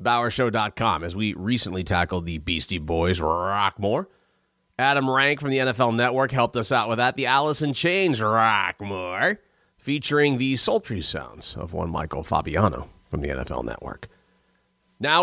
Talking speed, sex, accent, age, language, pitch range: 145 wpm, male, American, 40-59, English, 100-155 Hz